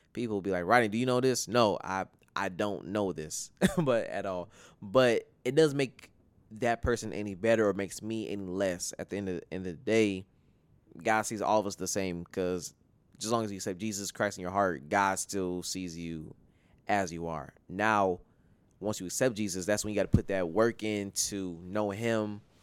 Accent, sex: American, male